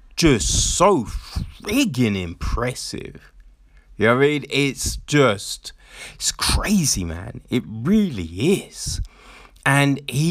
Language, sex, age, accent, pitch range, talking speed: English, male, 20-39, British, 100-140 Hz, 110 wpm